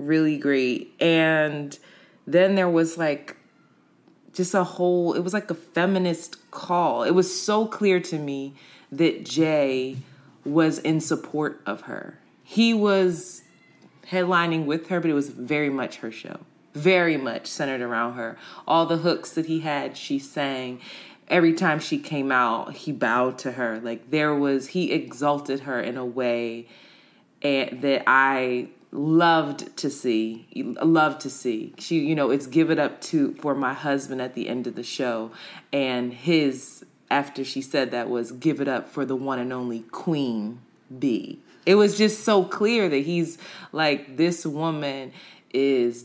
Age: 20-39